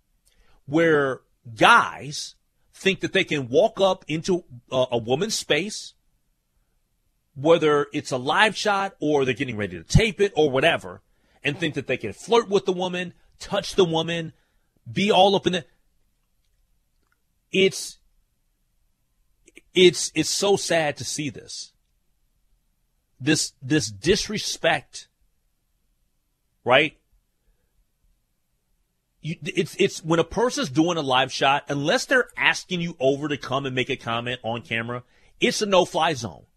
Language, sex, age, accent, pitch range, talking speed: English, male, 40-59, American, 110-180 Hz, 135 wpm